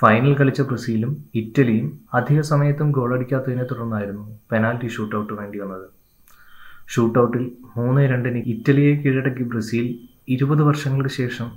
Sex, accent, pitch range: male, native, 110-135 Hz